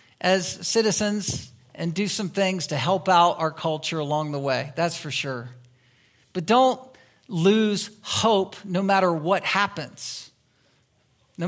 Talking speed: 135 wpm